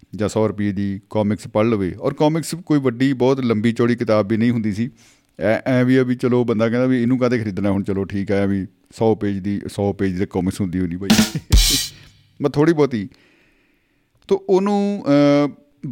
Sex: male